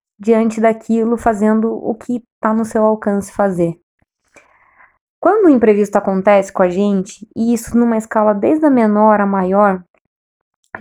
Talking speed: 150 wpm